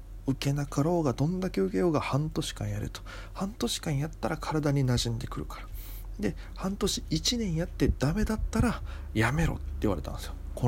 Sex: male